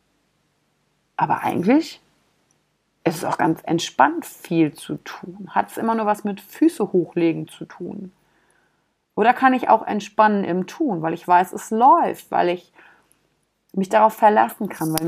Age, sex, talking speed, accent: 30-49, female, 155 wpm, German